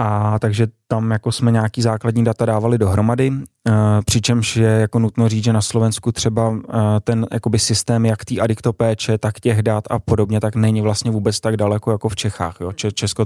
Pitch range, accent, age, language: 105-115 Hz, native, 20-39, Czech